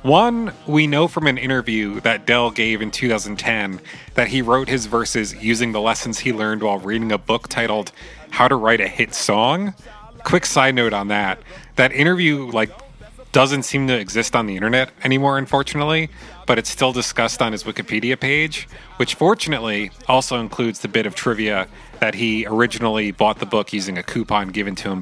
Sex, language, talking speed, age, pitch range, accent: male, English, 185 wpm, 30-49, 110-140 Hz, American